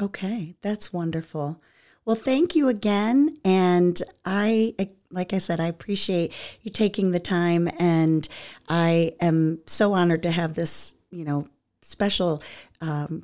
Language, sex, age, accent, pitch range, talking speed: English, female, 40-59, American, 155-195 Hz, 135 wpm